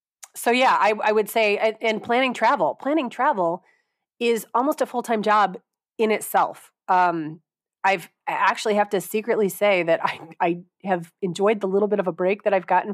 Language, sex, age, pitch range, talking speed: English, female, 30-49, 160-200 Hz, 180 wpm